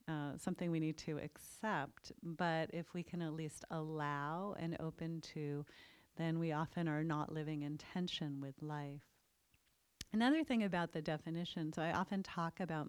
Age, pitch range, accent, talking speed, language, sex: 40-59, 150-175 Hz, American, 170 wpm, English, female